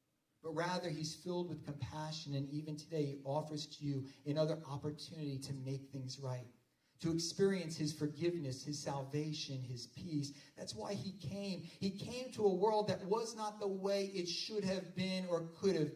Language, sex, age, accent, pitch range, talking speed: English, male, 40-59, American, 135-185 Hz, 180 wpm